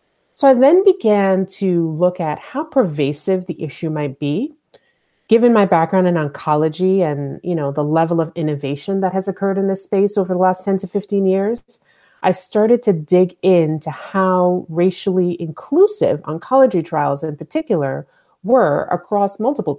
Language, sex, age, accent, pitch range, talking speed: English, female, 30-49, American, 150-195 Hz, 160 wpm